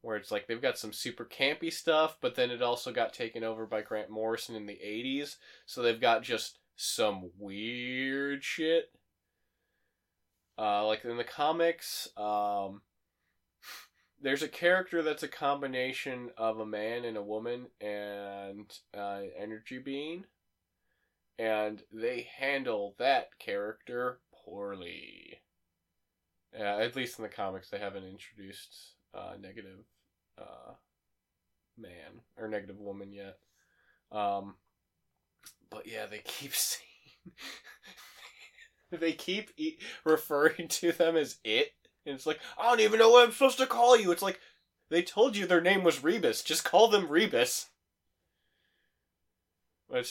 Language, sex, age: English, male, 20-39